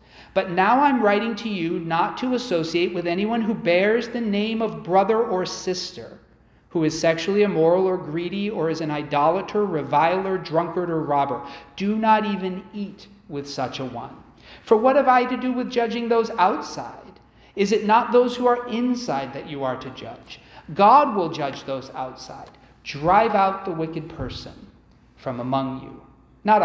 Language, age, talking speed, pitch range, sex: English, 40-59, 175 wpm, 140-210 Hz, male